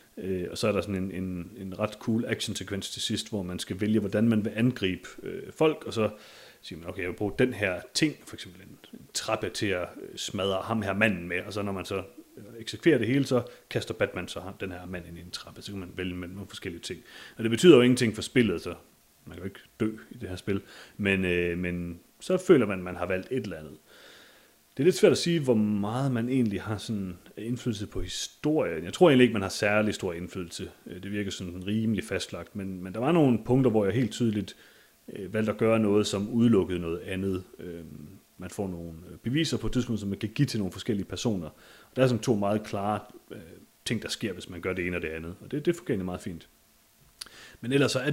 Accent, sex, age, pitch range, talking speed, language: native, male, 30-49, 90-115 Hz, 240 wpm, Danish